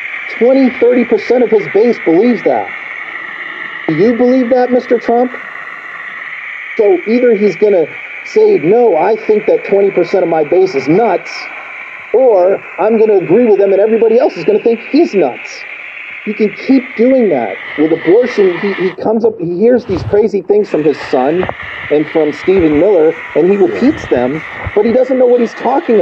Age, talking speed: 40-59, 180 wpm